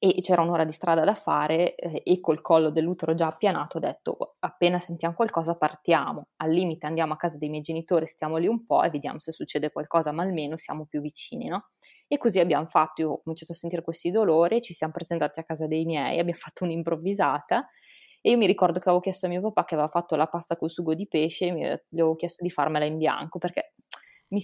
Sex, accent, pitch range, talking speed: female, native, 160-185 Hz, 225 wpm